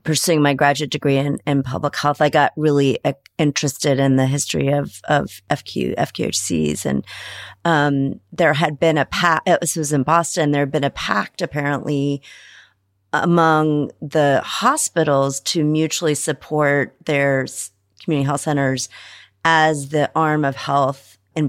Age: 40-59